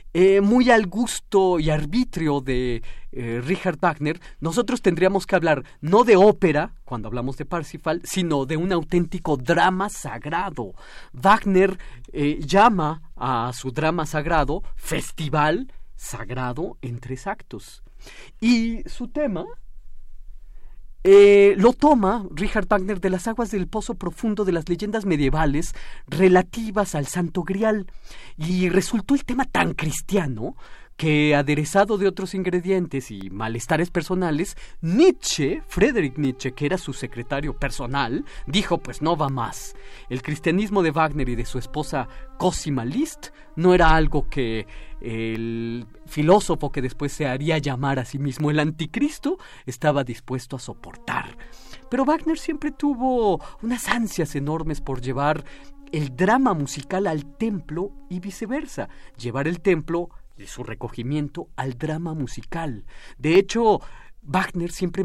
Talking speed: 135 wpm